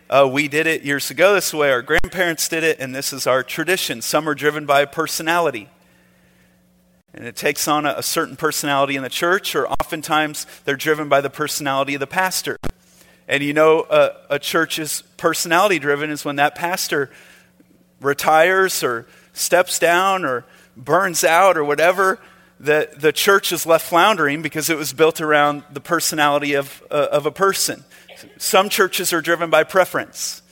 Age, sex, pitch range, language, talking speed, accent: 40-59, male, 145-180 Hz, English, 175 wpm, American